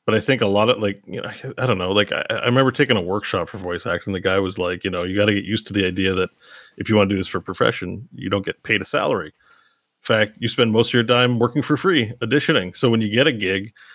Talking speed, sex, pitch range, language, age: 300 wpm, male, 110-140 Hz, English, 30-49